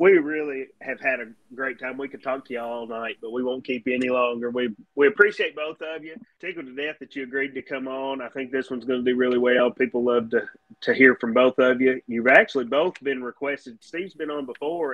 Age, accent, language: 30-49, American, English